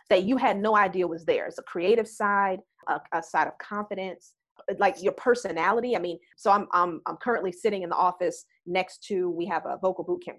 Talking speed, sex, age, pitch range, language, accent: 220 wpm, female, 30-49, 180-240 Hz, English, American